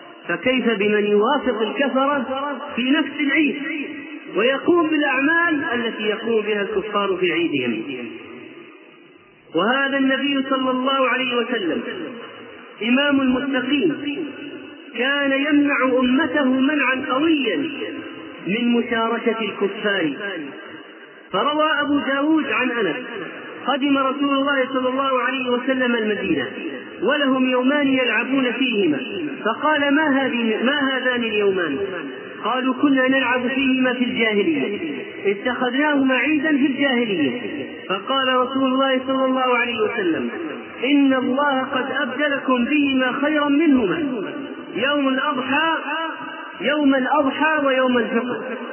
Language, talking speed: Arabic, 105 wpm